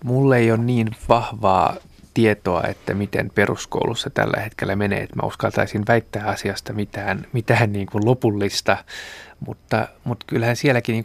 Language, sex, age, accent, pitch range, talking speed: Finnish, male, 20-39, native, 100-115 Hz, 145 wpm